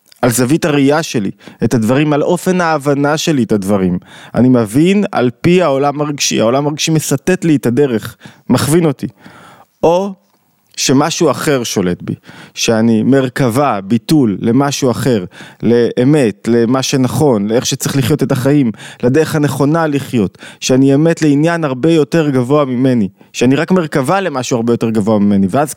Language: Hebrew